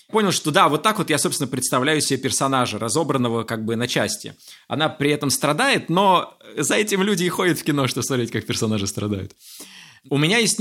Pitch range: 135-185 Hz